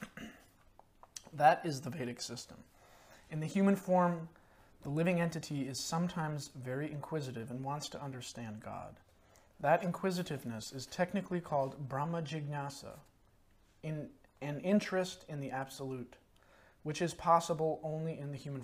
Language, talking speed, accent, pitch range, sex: English, 125 wpm, American, 125-165 Hz, male